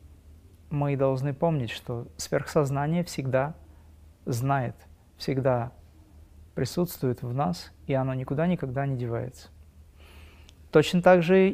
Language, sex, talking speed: Russian, male, 100 wpm